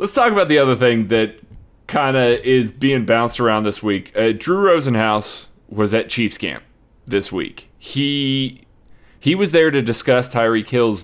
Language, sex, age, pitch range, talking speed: English, male, 30-49, 110-140 Hz, 175 wpm